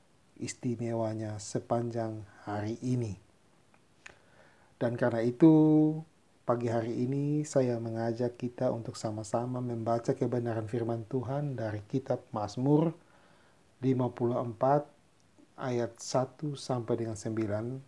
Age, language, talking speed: 40-59, Indonesian, 90 wpm